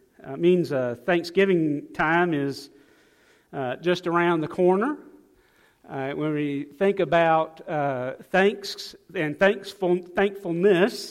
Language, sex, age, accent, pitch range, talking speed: English, male, 50-69, American, 150-195 Hz, 120 wpm